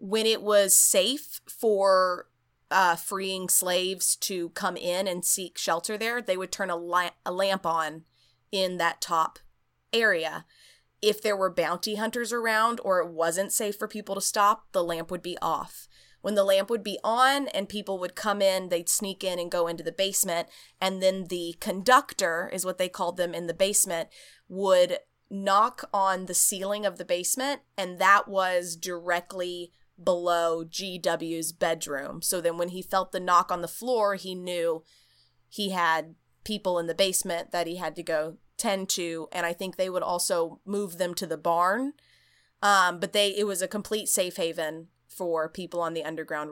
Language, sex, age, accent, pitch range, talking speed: English, female, 20-39, American, 175-205 Hz, 180 wpm